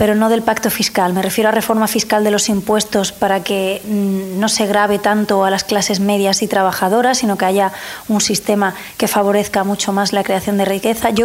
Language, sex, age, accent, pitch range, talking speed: French, female, 20-39, Spanish, 200-225 Hz, 210 wpm